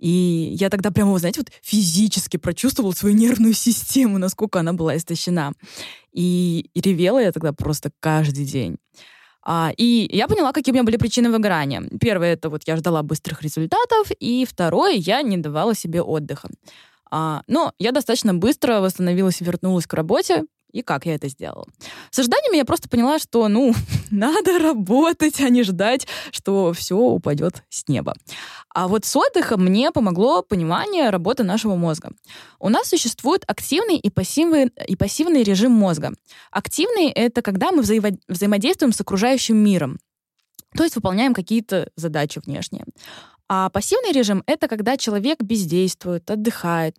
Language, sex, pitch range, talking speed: Russian, female, 175-250 Hz, 155 wpm